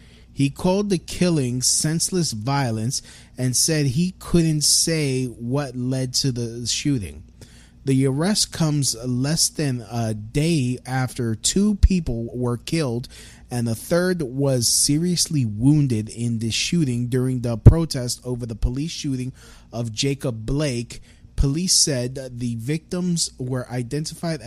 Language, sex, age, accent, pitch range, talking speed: English, male, 20-39, American, 125-155 Hz, 130 wpm